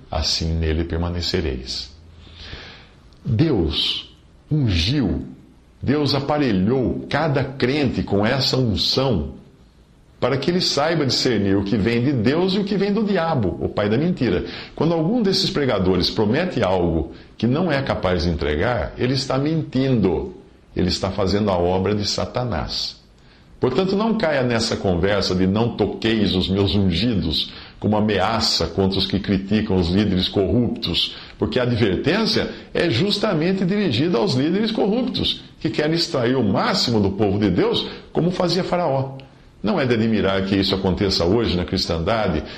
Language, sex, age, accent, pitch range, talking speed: Portuguese, male, 50-69, Brazilian, 90-130 Hz, 150 wpm